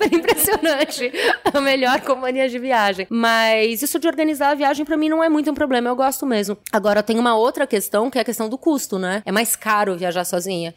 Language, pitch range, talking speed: Portuguese, 220-280 Hz, 215 wpm